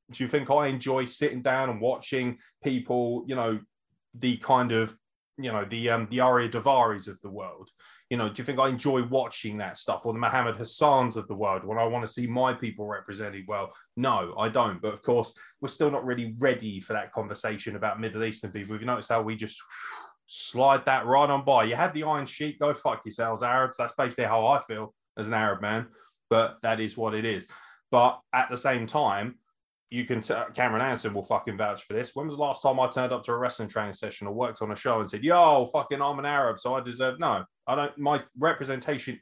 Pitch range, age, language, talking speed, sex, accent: 115-135 Hz, 20-39, English, 235 wpm, male, British